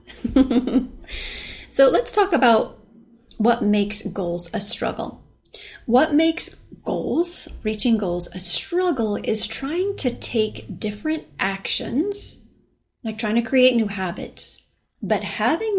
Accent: American